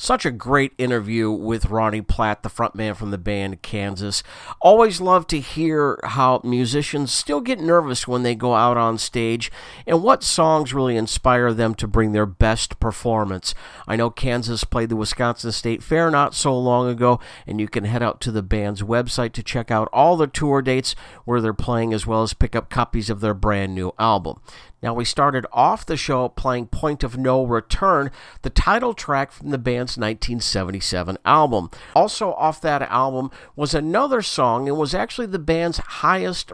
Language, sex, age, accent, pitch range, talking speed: English, male, 50-69, American, 115-150 Hz, 185 wpm